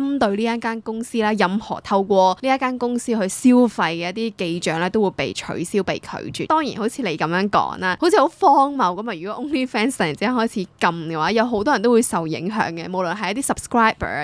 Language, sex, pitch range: Chinese, female, 185-245 Hz